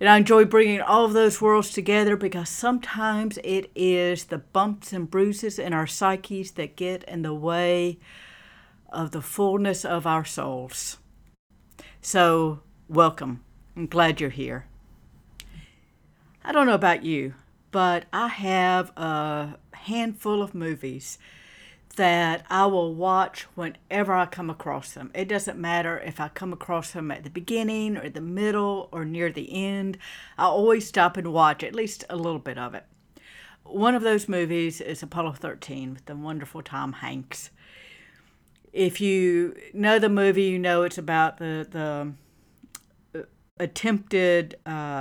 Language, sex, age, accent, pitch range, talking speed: English, female, 60-79, American, 160-195 Hz, 150 wpm